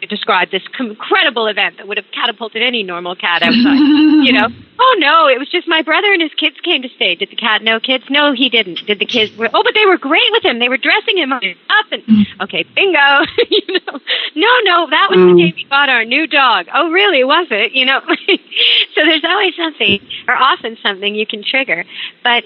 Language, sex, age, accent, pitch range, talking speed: English, female, 40-59, American, 200-285 Hz, 220 wpm